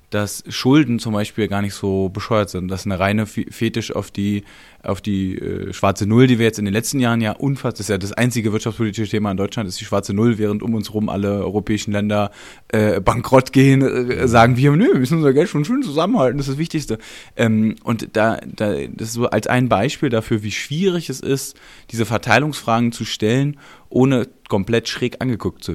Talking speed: 215 wpm